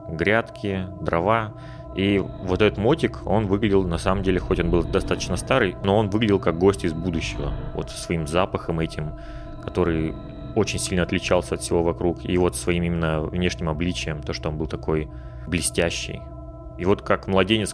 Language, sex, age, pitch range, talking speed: Russian, male, 20-39, 85-105 Hz, 170 wpm